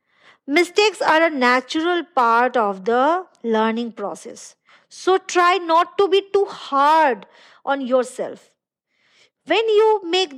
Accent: Indian